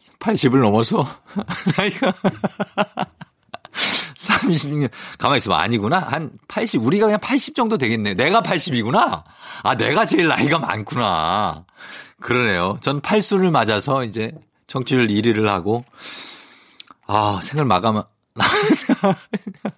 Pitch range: 95-145 Hz